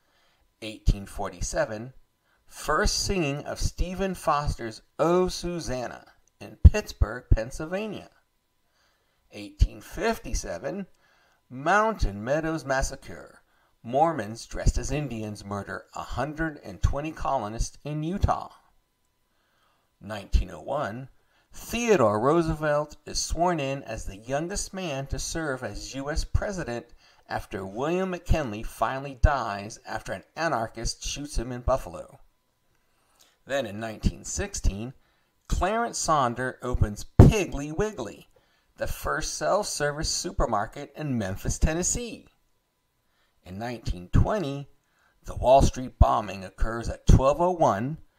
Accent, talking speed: American, 95 wpm